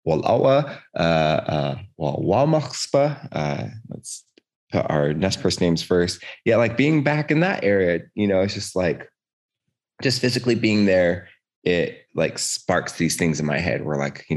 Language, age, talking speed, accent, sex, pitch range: English, 20-39, 170 wpm, American, male, 75-95 Hz